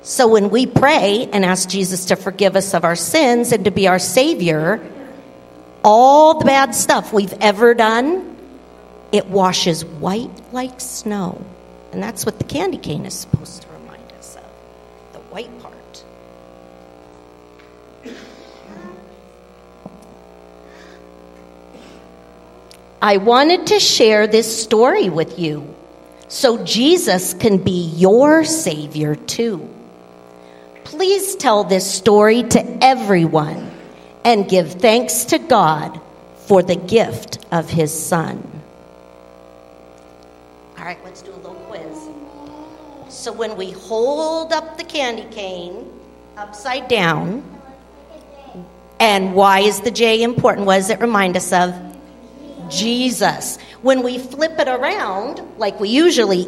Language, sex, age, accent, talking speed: English, female, 50-69, American, 120 wpm